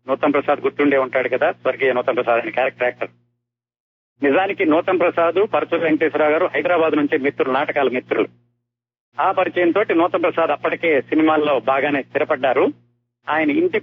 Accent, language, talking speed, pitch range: native, Telugu, 145 wpm, 120-165 Hz